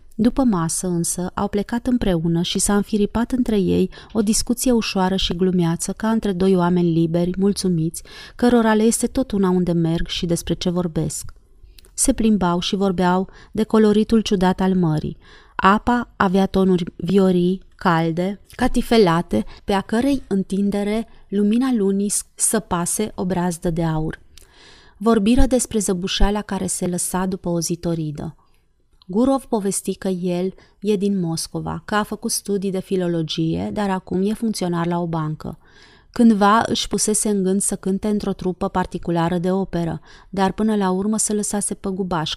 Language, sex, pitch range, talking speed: Romanian, female, 180-215 Hz, 155 wpm